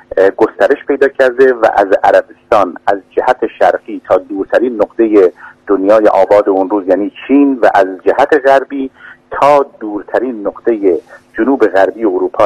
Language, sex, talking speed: Persian, male, 135 wpm